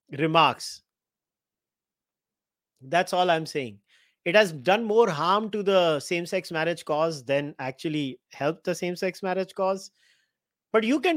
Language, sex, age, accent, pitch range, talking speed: English, male, 30-49, Indian, 145-185 Hz, 135 wpm